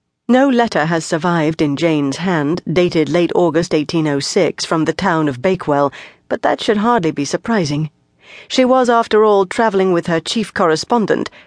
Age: 40-59